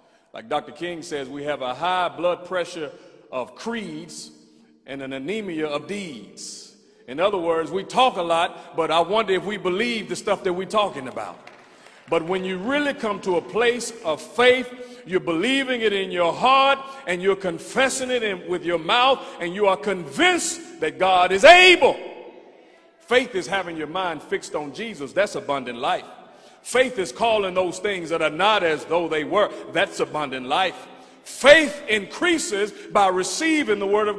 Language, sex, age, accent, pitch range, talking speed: English, male, 40-59, American, 180-255 Hz, 175 wpm